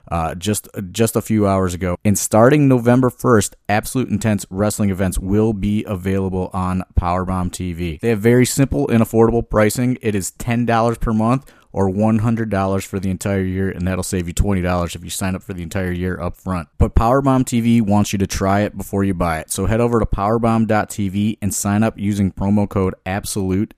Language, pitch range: English, 95-110 Hz